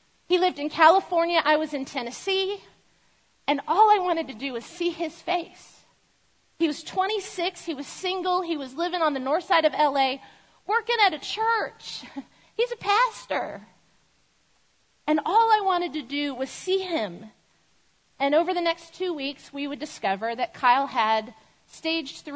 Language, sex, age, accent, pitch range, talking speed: English, female, 40-59, American, 240-345 Hz, 165 wpm